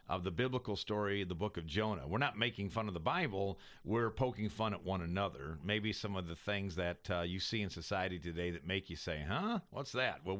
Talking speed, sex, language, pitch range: 235 wpm, male, English, 85-105 Hz